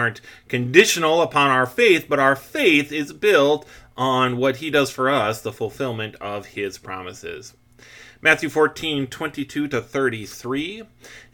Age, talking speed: 30-49, 140 wpm